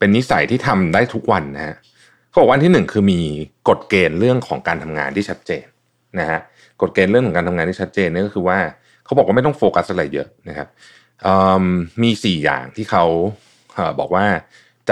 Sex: male